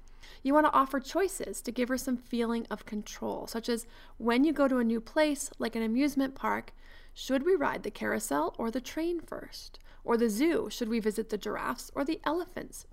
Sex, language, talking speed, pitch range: female, English, 210 wpm, 220-265 Hz